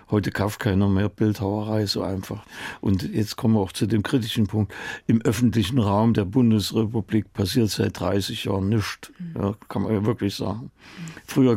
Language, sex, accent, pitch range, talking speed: German, male, German, 110-135 Hz, 170 wpm